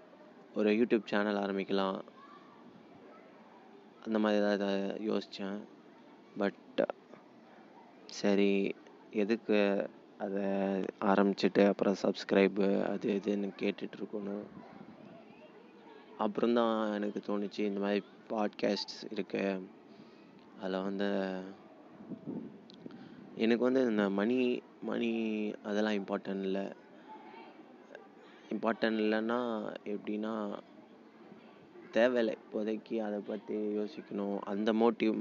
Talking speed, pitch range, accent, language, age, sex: 70 wpm, 100-110 Hz, Indian, English, 20-39, male